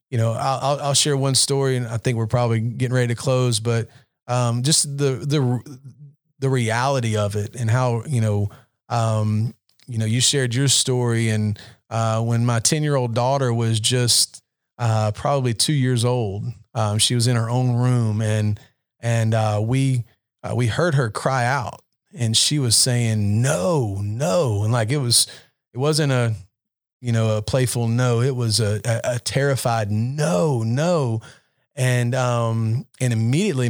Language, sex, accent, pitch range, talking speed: English, male, American, 115-135 Hz, 175 wpm